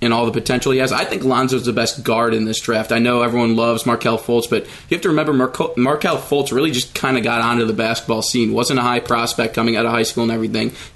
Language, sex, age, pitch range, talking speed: English, male, 20-39, 115-135 Hz, 275 wpm